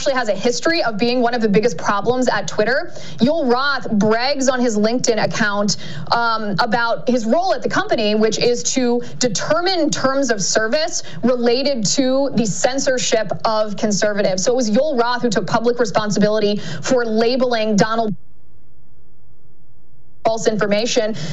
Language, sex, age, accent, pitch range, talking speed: English, female, 20-39, American, 210-255 Hz, 150 wpm